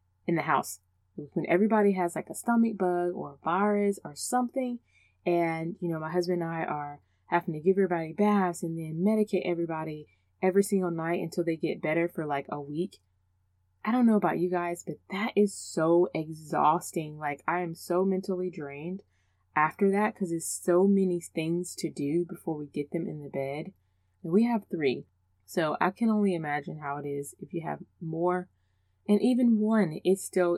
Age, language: 20-39, English